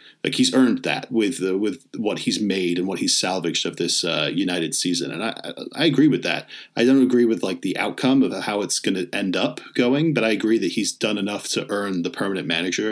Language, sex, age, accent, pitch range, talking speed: English, male, 30-49, American, 100-145 Hz, 240 wpm